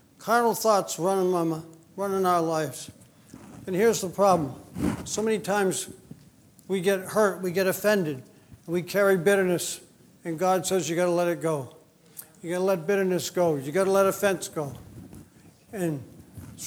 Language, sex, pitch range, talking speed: English, male, 170-205 Hz, 155 wpm